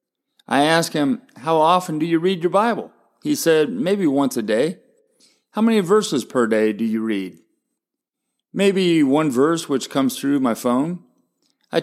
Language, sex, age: English, male, 40-59